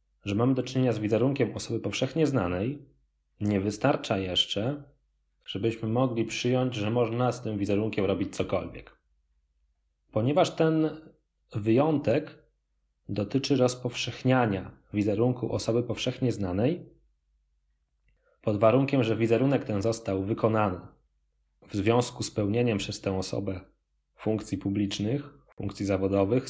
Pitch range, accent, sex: 95-125 Hz, native, male